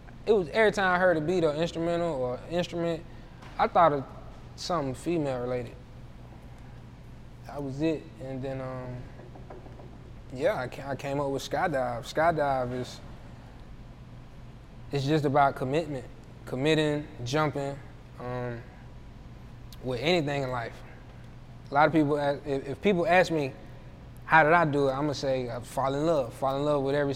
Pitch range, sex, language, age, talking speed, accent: 125-150 Hz, male, English, 20-39, 145 wpm, American